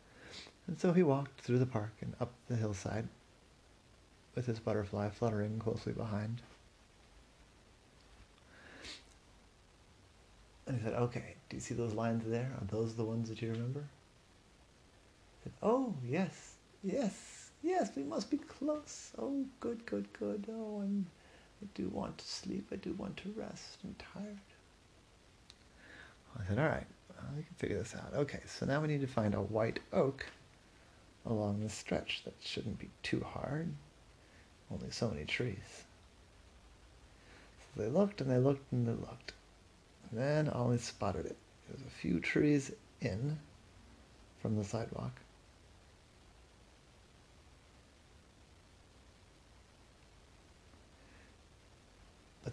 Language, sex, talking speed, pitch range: English, male, 135 wpm, 95-135 Hz